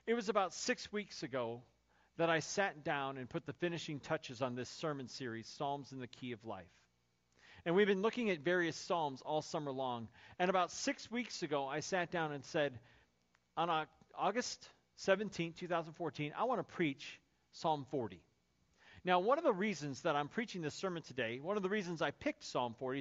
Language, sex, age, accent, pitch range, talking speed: English, male, 40-59, American, 145-200 Hz, 195 wpm